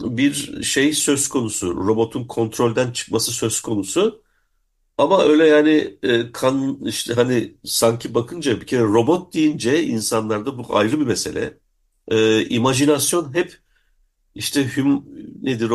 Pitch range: 110-145 Hz